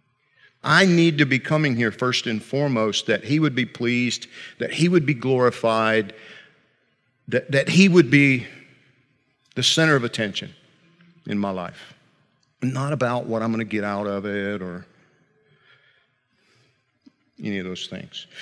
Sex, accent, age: male, American, 50-69